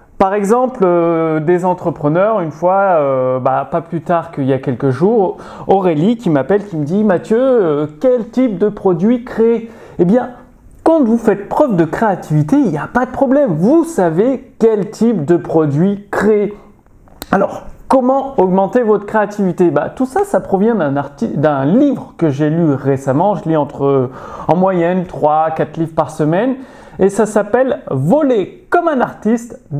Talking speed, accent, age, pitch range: 170 wpm, French, 30-49, 165-245 Hz